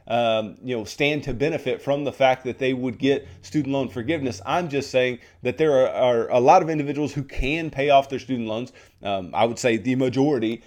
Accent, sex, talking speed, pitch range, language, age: American, male, 225 wpm, 125-160 Hz, English, 30-49